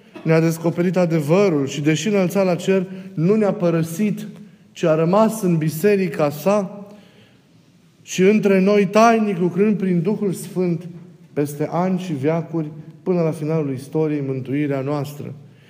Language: Romanian